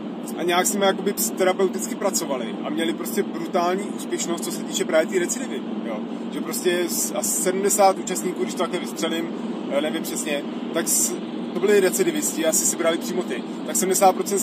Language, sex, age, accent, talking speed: Czech, male, 30-49, native, 175 wpm